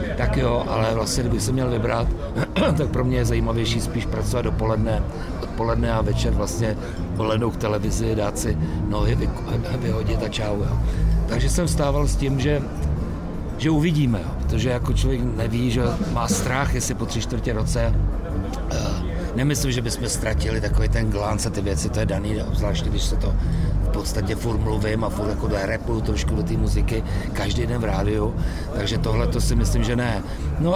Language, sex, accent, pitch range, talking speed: Czech, male, native, 95-120 Hz, 180 wpm